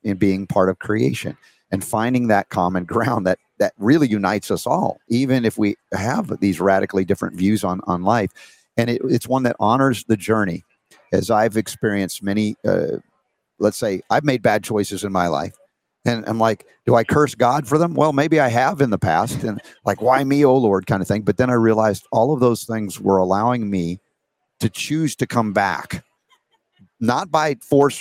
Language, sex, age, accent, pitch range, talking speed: English, male, 50-69, American, 95-125 Hz, 200 wpm